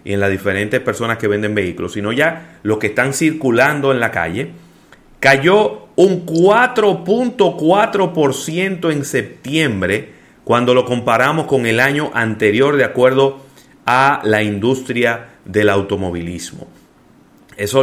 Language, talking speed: Spanish, 125 wpm